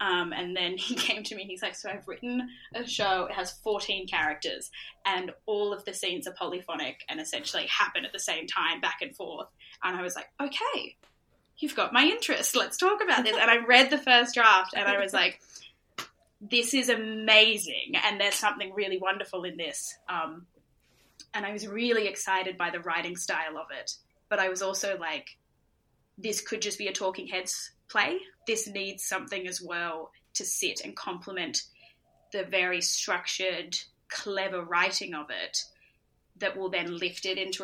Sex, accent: female, Australian